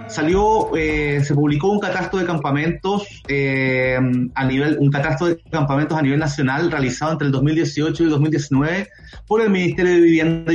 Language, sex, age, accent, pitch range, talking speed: Spanish, male, 30-49, Venezuelan, 145-180 Hz, 170 wpm